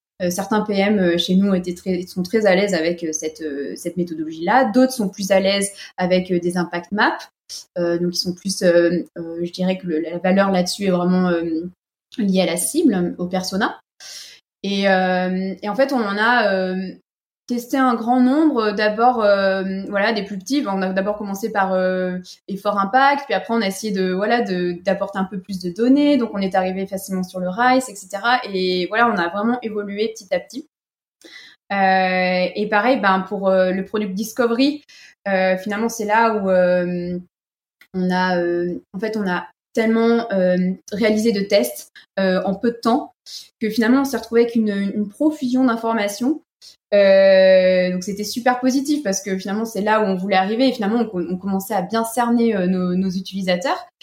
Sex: female